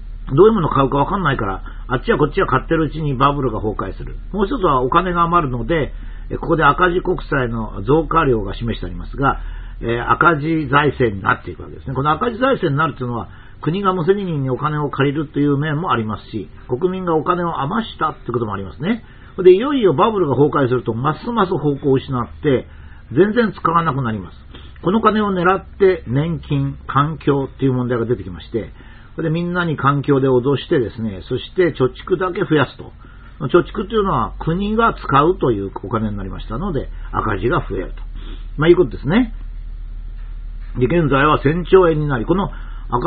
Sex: male